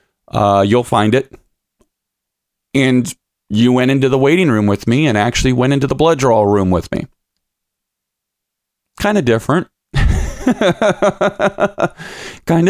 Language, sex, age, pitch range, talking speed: English, male, 30-49, 100-145 Hz, 130 wpm